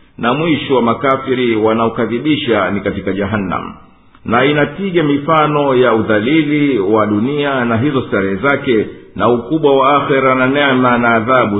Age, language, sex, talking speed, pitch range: 50-69, Swahili, male, 140 wpm, 110-135 Hz